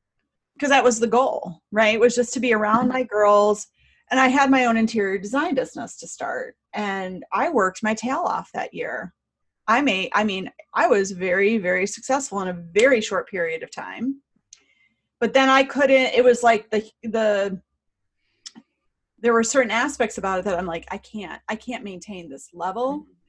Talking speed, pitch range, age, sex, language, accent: 190 wpm, 195-260 Hz, 30-49, female, English, American